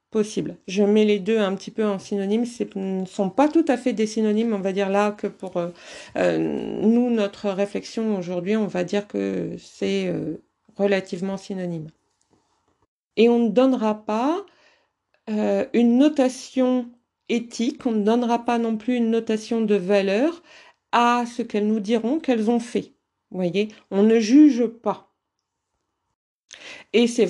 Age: 50-69